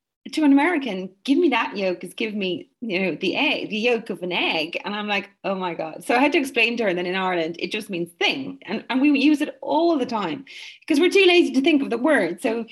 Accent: Irish